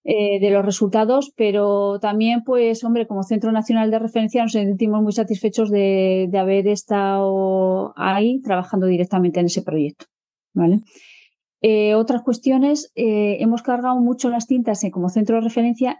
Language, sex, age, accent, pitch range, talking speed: Spanish, female, 30-49, Spanish, 195-230 Hz, 160 wpm